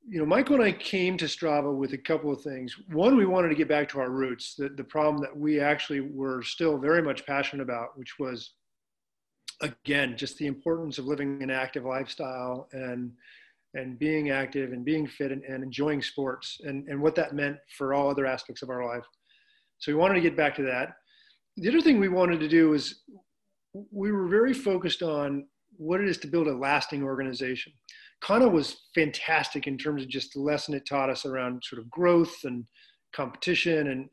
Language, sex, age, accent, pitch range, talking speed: English, male, 40-59, American, 135-170 Hz, 205 wpm